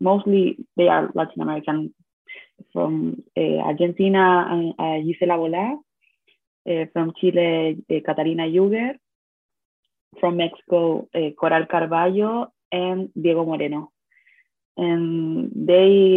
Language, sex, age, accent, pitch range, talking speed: English, female, 20-39, Spanish, 160-190 Hz, 95 wpm